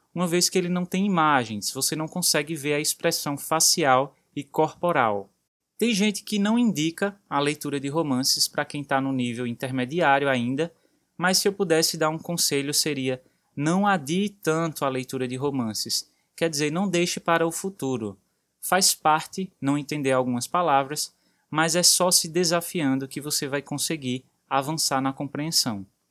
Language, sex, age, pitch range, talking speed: Portuguese, male, 20-39, 140-170 Hz, 165 wpm